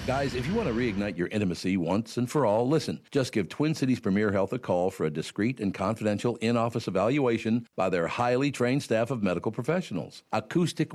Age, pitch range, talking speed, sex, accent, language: 60-79, 95-130 Hz, 205 wpm, male, American, English